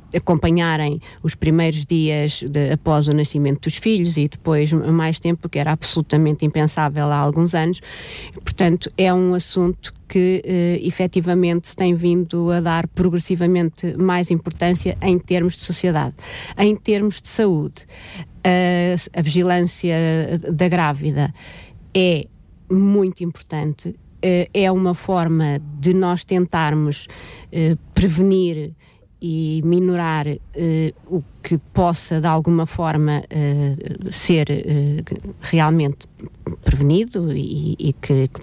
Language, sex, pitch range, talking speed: Portuguese, female, 150-180 Hz, 120 wpm